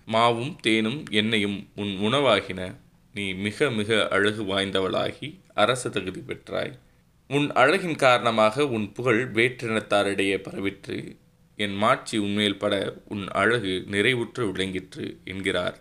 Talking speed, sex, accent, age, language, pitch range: 110 wpm, male, native, 20-39, Tamil, 100-115 Hz